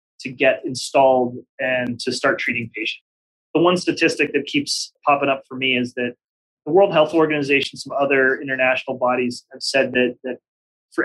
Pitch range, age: 125-145 Hz, 30-49